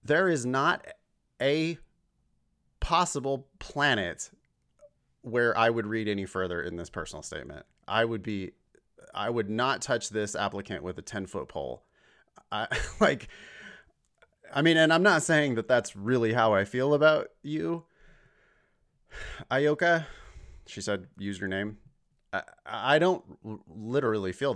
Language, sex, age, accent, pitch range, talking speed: English, male, 30-49, American, 100-135 Hz, 140 wpm